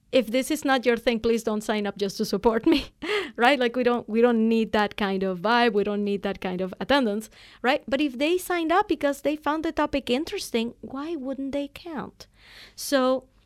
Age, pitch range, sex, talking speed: 30-49, 210-270 Hz, female, 220 wpm